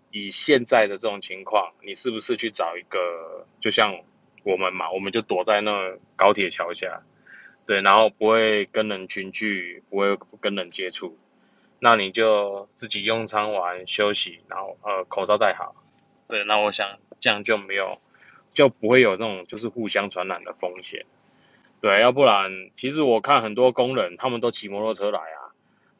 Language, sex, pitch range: Chinese, male, 100-125 Hz